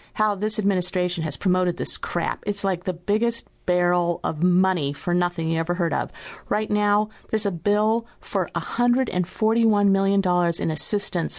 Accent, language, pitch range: American, English, 175-235 Hz